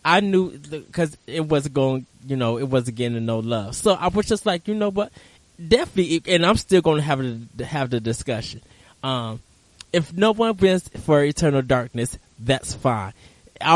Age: 20-39